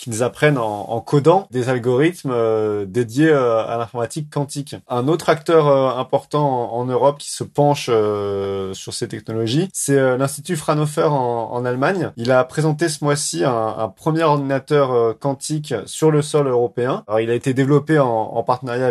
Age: 20-39